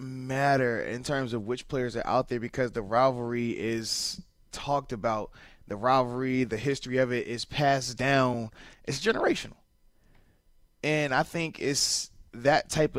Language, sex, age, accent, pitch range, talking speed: English, male, 20-39, American, 120-140 Hz, 150 wpm